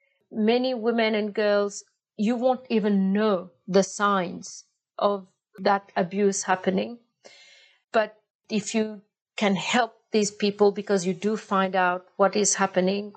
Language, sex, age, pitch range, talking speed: English, female, 50-69, 190-215 Hz, 130 wpm